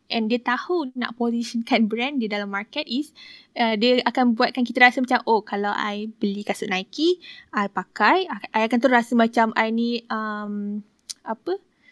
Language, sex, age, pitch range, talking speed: Malay, female, 10-29, 210-250 Hz, 160 wpm